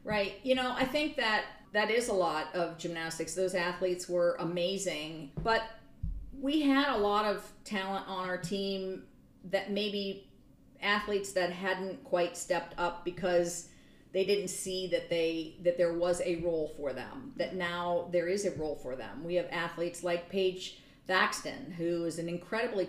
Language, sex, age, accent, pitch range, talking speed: English, female, 50-69, American, 165-190 Hz, 170 wpm